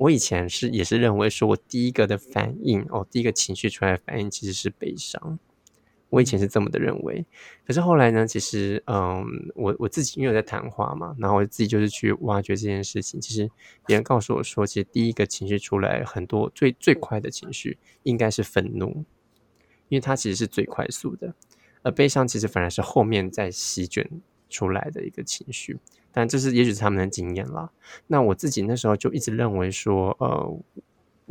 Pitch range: 100-120 Hz